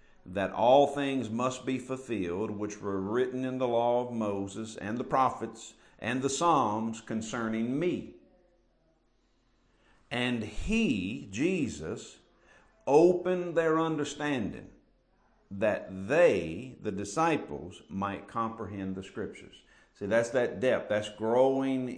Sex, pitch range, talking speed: male, 110-150 Hz, 115 wpm